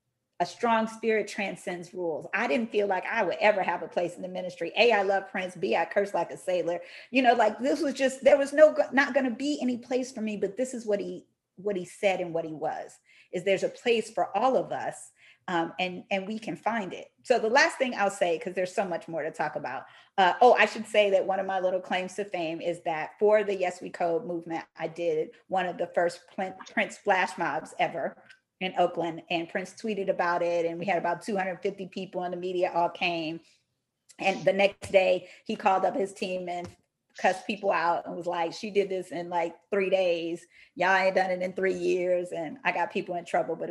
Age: 40-59